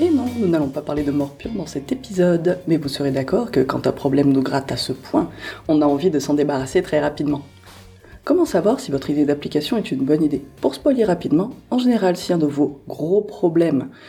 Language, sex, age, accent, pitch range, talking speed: French, female, 20-39, French, 140-185 Hz, 225 wpm